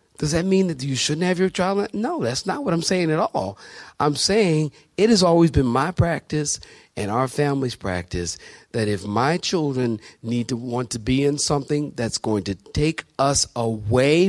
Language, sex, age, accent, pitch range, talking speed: English, male, 40-59, American, 120-185 Hz, 195 wpm